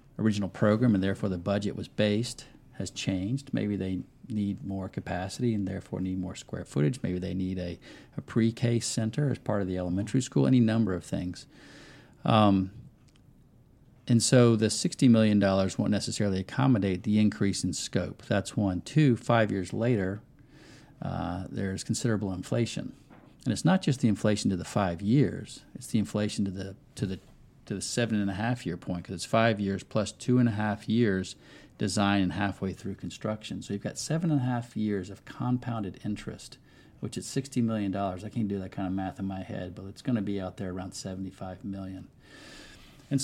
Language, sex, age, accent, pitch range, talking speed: English, male, 40-59, American, 95-120 Hz, 195 wpm